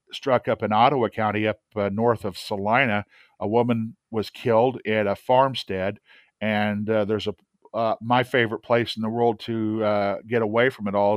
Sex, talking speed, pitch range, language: male, 190 wpm, 105-120 Hz, English